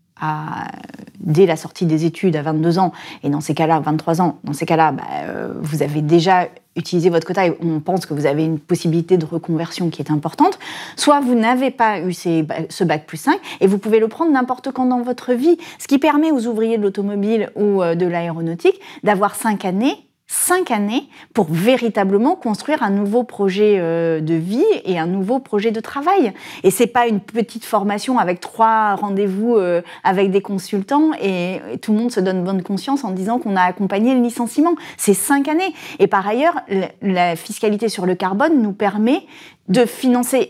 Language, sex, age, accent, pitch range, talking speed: French, female, 30-49, French, 175-250 Hz, 190 wpm